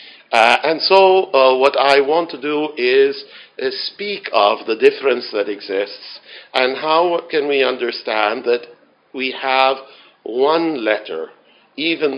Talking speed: 140 wpm